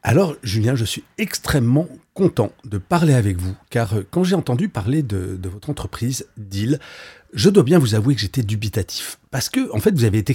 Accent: French